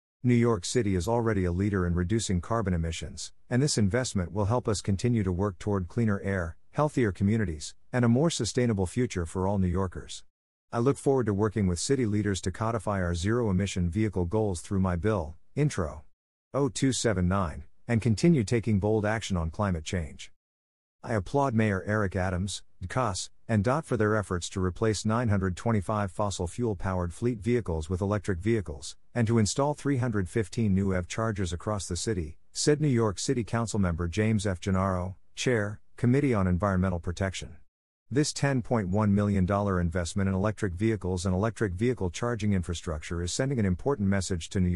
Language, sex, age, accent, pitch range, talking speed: English, male, 50-69, American, 90-115 Hz, 165 wpm